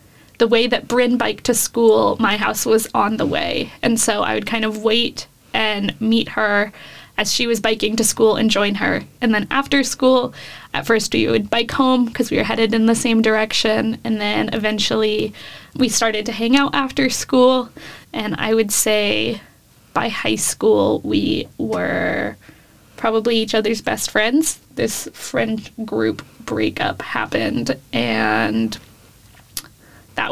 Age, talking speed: 10-29, 160 wpm